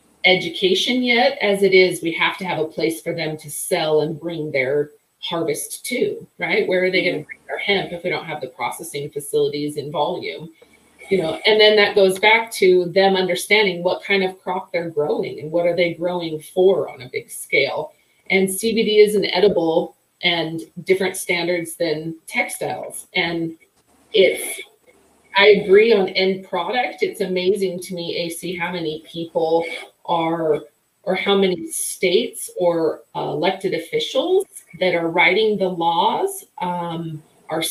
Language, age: English, 30-49